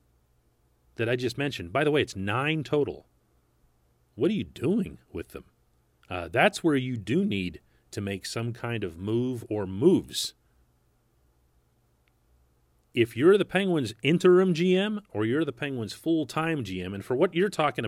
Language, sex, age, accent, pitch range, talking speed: English, male, 40-59, American, 95-140 Hz, 160 wpm